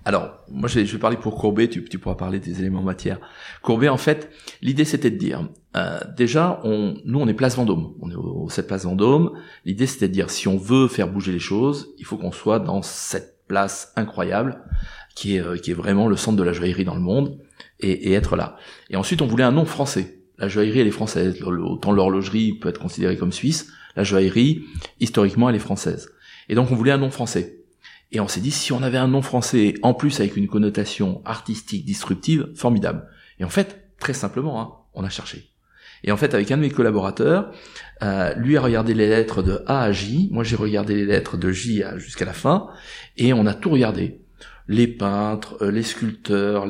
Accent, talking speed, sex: French, 215 wpm, male